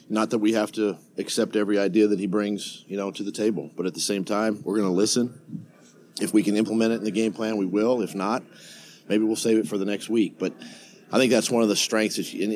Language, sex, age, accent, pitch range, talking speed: English, male, 40-59, American, 90-110 Hz, 270 wpm